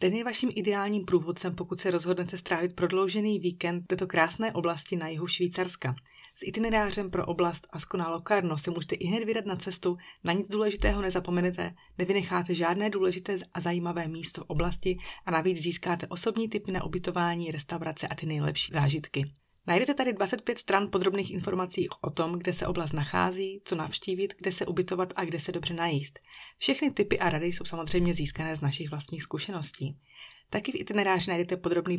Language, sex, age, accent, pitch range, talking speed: Czech, female, 30-49, native, 160-190 Hz, 175 wpm